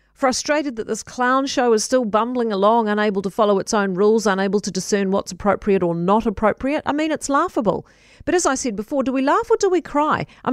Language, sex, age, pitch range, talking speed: English, female, 40-59, 190-265 Hz, 230 wpm